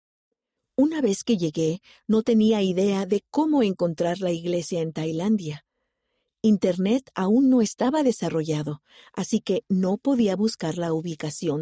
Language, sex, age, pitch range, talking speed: Spanish, female, 50-69, 170-245 Hz, 135 wpm